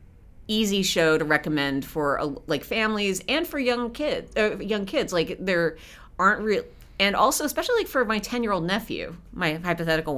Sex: female